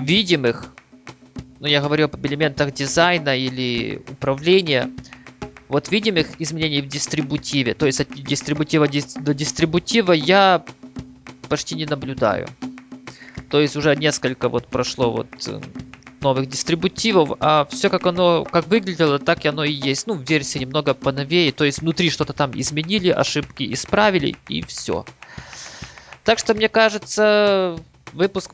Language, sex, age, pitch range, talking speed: Russian, male, 20-39, 135-175 Hz, 135 wpm